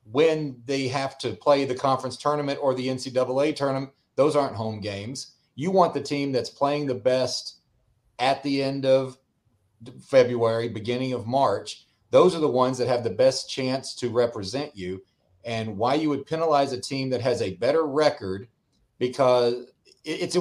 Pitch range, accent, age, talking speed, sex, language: 120-145 Hz, American, 40-59, 170 wpm, male, English